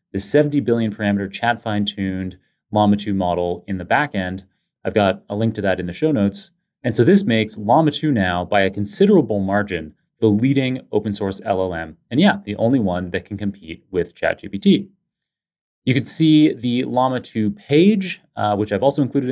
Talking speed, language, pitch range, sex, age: 170 wpm, English, 95-130 Hz, male, 30-49